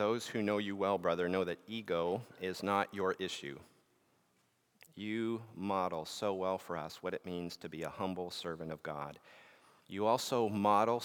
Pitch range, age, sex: 90-110 Hz, 40-59, male